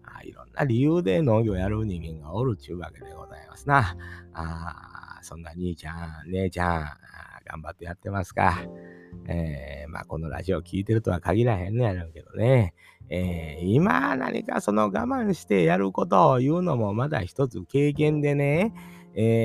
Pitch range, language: 85-130 Hz, Japanese